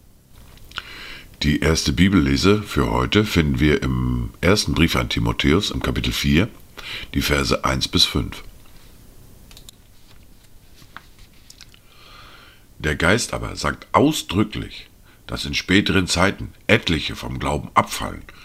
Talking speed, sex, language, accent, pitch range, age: 105 wpm, male, German, German, 80-105 Hz, 50-69